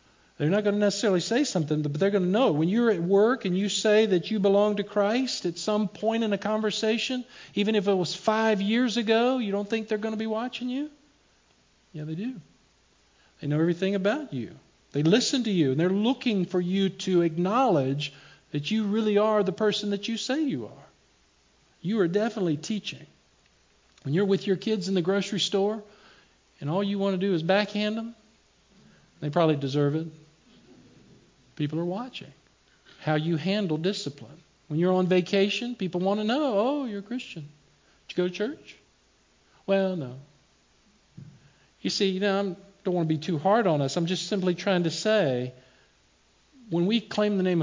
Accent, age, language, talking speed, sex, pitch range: American, 50-69, English, 195 wpm, male, 155-210 Hz